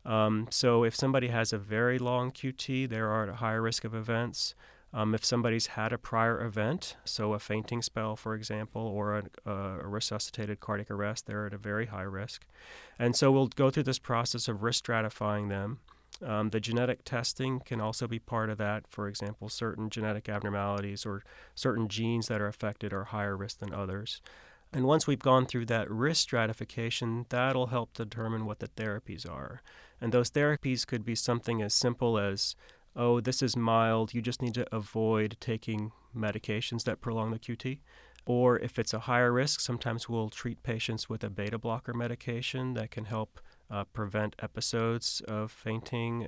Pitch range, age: 105-120 Hz, 30-49